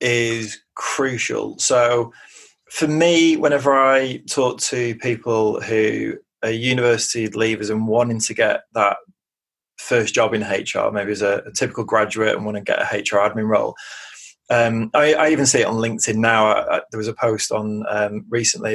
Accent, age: British, 20-39